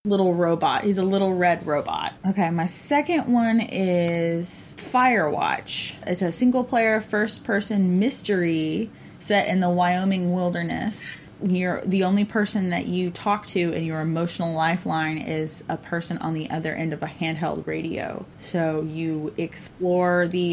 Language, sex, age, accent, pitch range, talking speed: English, female, 20-39, American, 160-185 Hz, 150 wpm